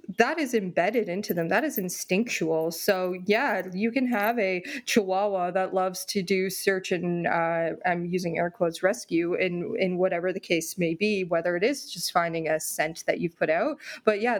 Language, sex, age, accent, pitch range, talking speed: English, female, 20-39, American, 175-215 Hz, 195 wpm